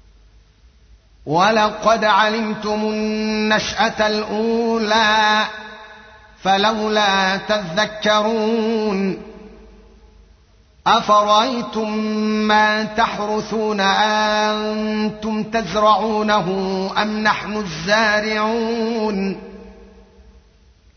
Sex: male